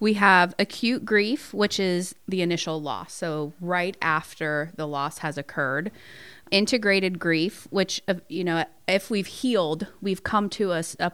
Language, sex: English, female